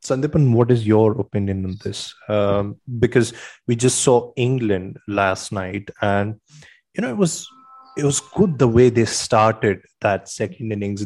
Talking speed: 155 wpm